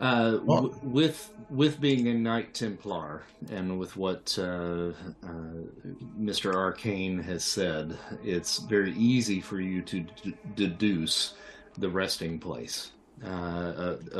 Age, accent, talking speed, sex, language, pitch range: 40-59, American, 125 wpm, male, English, 85-100 Hz